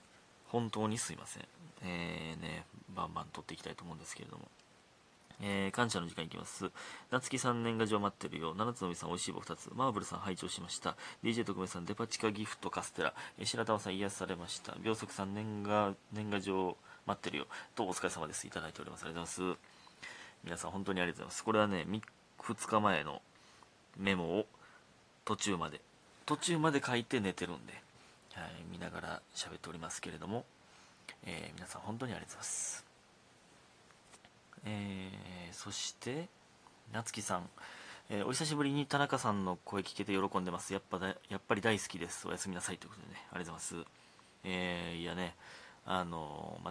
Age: 30-49